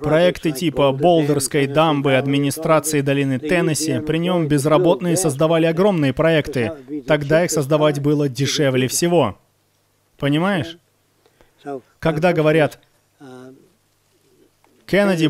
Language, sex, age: Russian, male, 30-49